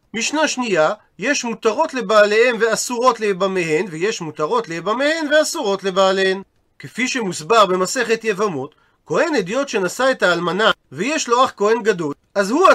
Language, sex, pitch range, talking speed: Hebrew, male, 195-255 Hz, 130 wpm